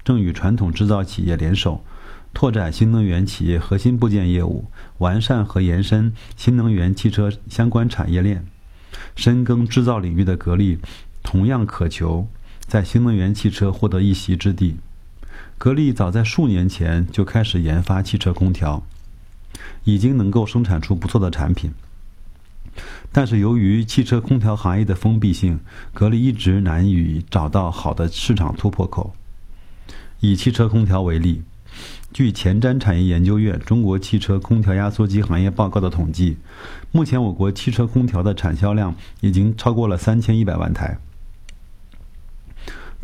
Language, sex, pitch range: Chinese, male, 90-110 Hz